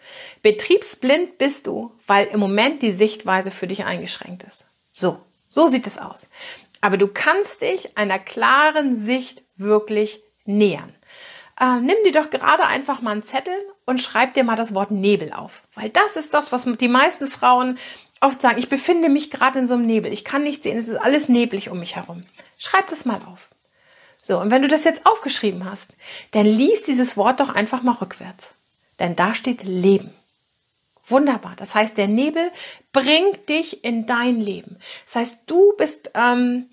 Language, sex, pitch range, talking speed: German, female, 215-305 Hz, 180 wpm